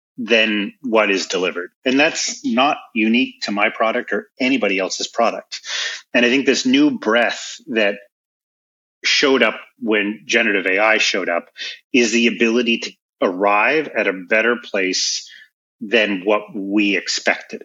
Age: 30-49